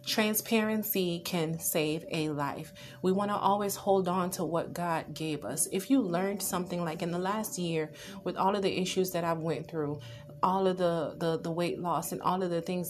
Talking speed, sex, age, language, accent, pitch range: 220 wpm, female, 30-49, English, American, 155-185 Hz